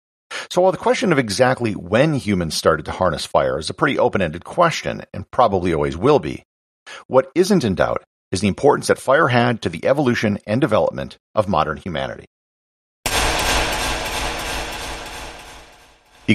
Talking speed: 150 wpm